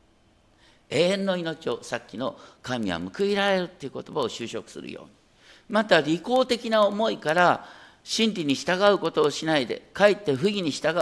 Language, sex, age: Japanese, male, 50-69